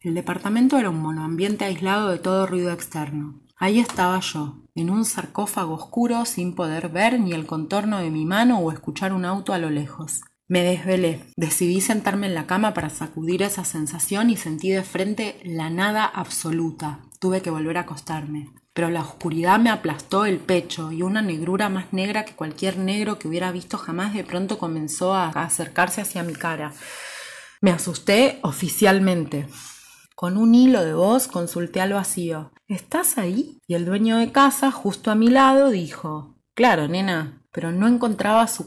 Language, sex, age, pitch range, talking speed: Spanish, female, 20-39, 160-200 Hz, 175 wpm